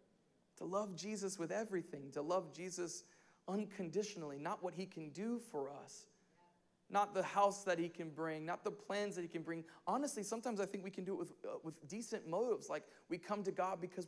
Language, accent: English, American